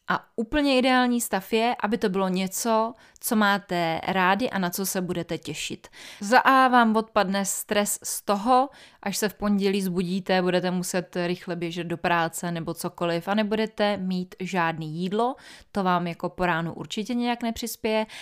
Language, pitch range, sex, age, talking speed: Czech, 180-220 Hz, female, 20-39, 165 wpm